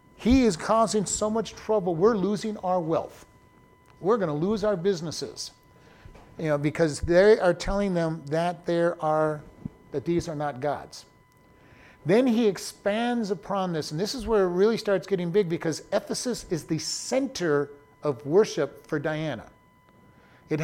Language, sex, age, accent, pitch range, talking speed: English, male, 50-69, American, 150-200 Hz, 160 wpm